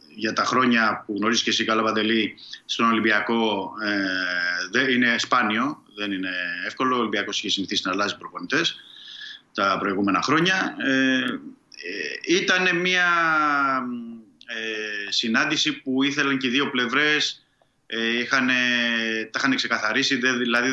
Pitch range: 105-125 Hz